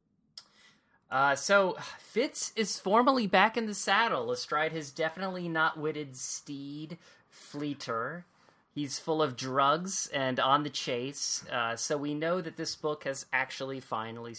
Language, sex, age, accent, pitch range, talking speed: English, male, 30-49, American, 130-165 Hz, 140 wpm